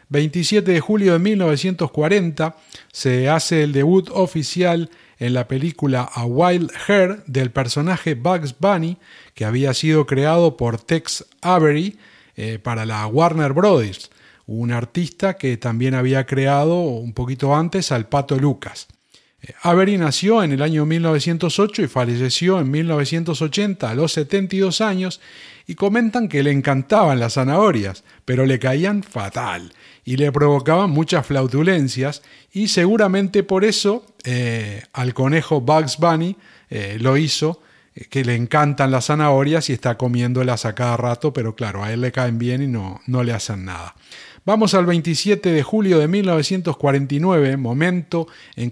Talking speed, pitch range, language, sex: 150 wpm, 130-175 Hz, Spanish, male